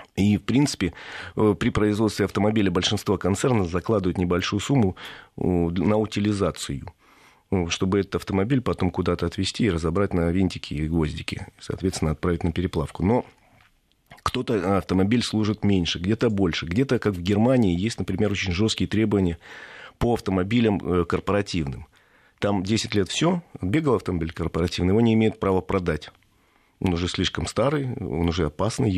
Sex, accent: male, native